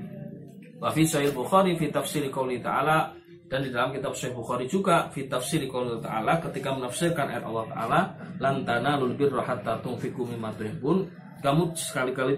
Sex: male